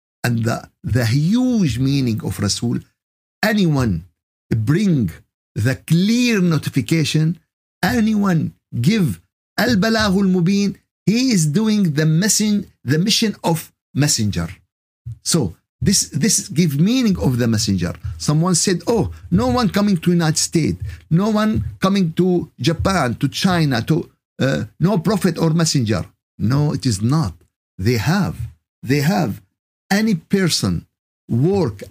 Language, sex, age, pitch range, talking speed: Arabic, male, 50-69, 120-185 Hz, 125 wpm